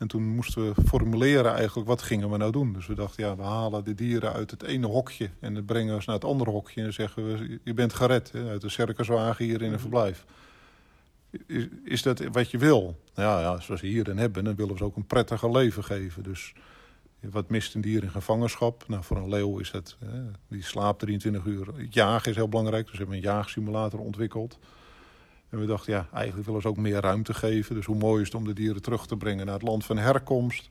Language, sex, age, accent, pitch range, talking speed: Dutch, male, 50-69, Dutch, 105-115 Hz, 240 wpm